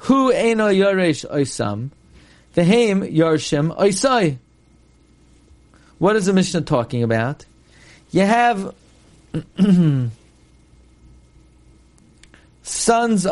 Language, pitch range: English, 125-195 Hz